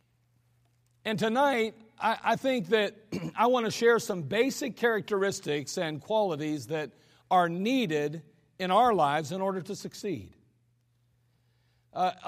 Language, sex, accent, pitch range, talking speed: English, male, American, 165-220 Hz, 120 wpm